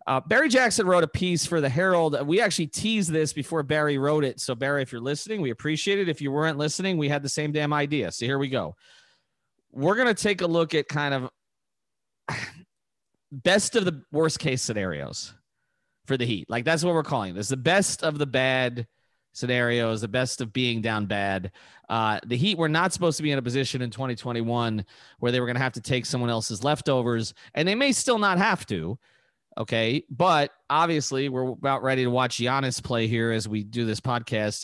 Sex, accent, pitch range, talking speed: male, American, 120-160 Hz, 210 wpm